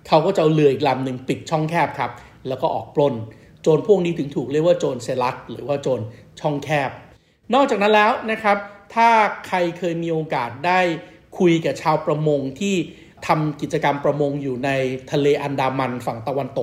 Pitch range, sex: 140-170 Hz, male